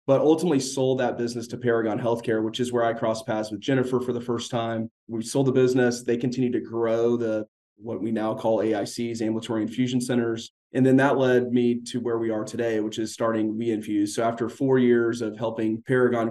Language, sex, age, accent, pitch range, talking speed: English, male, 30-49, American, 110-125 Hz, 215 wpm